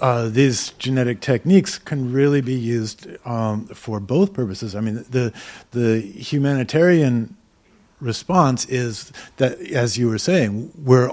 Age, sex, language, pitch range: 50-69, male, English, 115-140 Hz